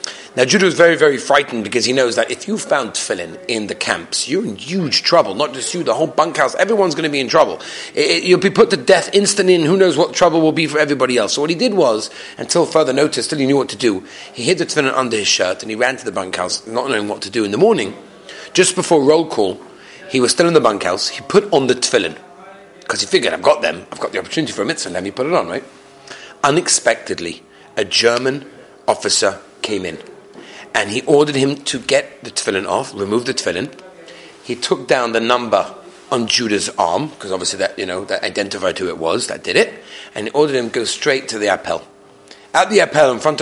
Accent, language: British, English